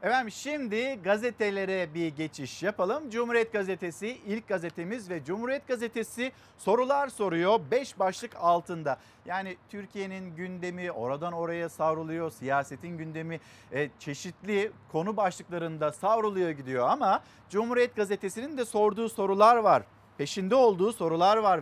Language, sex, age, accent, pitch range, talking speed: Turkish, male, 50-69, native, 180-235 Hz, 120 wpm